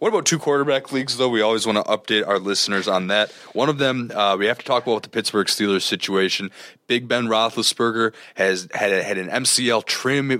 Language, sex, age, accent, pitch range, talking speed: English, male, 20-39, American, 95-125 Hz, 225 wpm